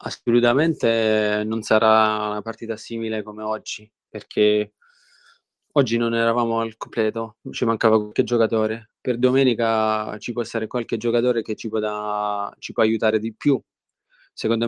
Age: 20-39